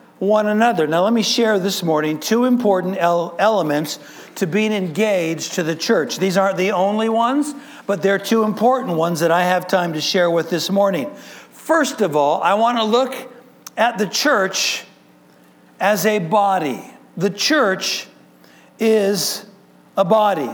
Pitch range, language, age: 155-215 Hz, English, 60-79